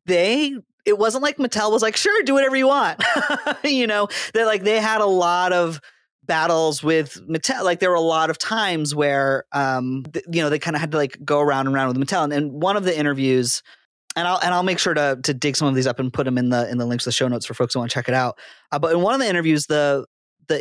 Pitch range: 145-200 Hz